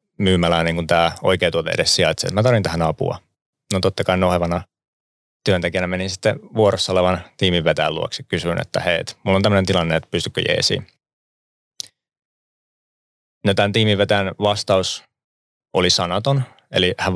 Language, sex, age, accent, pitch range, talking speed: Finnish, male, 30-49, native, 85-100 Hz, 140 wpm